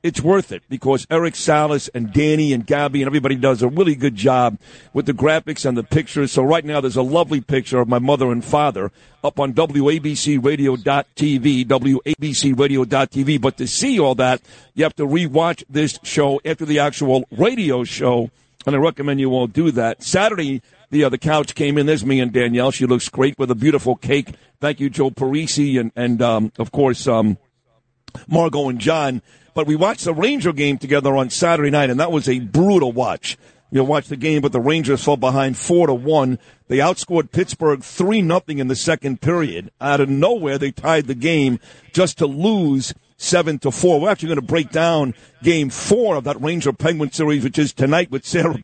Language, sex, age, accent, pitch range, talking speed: English, male, 50-69, American, 130-155 Hz, 200 wpm